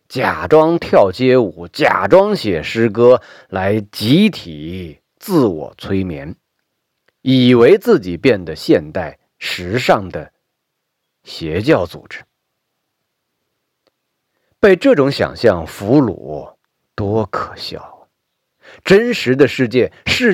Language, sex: Chinese, male